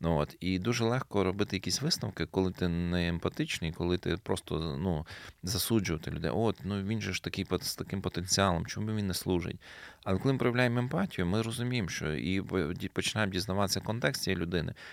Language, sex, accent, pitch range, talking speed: Ukrainian, male, native, 90-110 Hz, 180 wpm